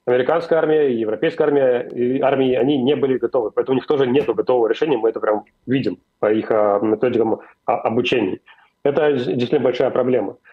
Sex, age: male, 30-49